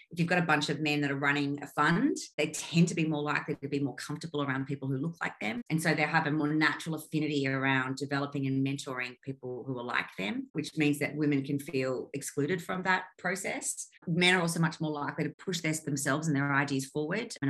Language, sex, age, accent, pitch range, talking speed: English, female, 30-49, Australian, 135-160 Hz, 240 wpm